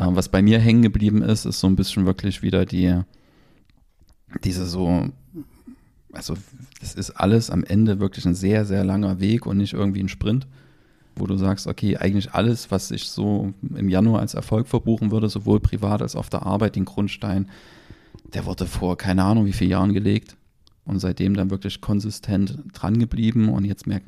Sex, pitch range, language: male, 95-110 Hz, German